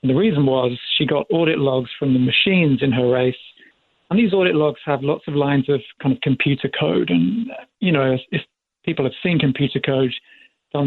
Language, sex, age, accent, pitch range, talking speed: English, male, 40-59, British, 130-150 Hz, 210 wpm